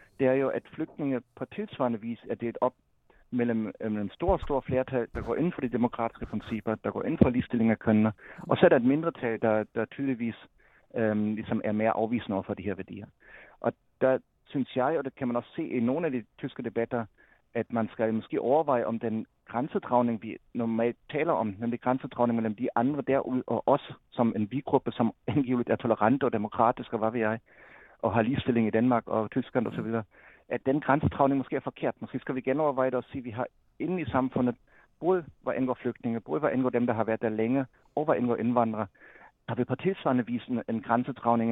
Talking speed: 215 wpm